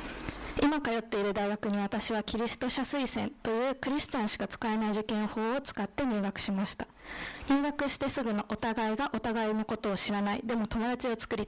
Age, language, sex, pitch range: 20-39, Japanese, female, 205-255 Hz